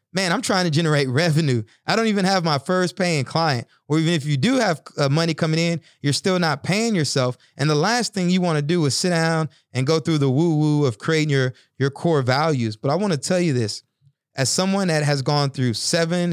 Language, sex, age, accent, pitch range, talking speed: English, male, 30-49, American, 125-155 Hz, 240 wpm